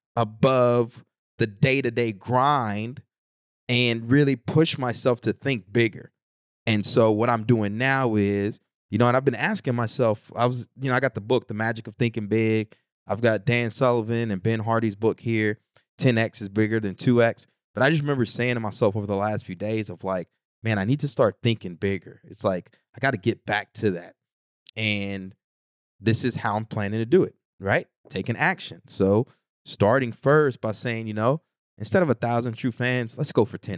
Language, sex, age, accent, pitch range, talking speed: English, male, 20-39, American, 105-125 Hz, 190 wpm